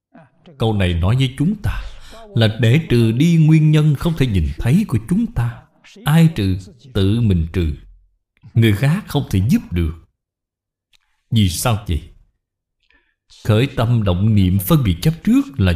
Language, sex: Vietnamese, male